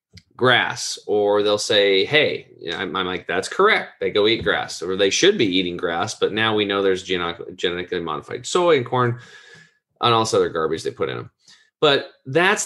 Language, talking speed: English, 185 wpm